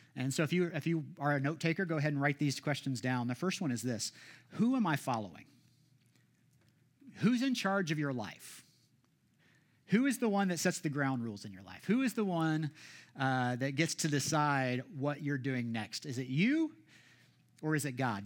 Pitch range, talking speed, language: 125-160 Hz, 210 wpm, English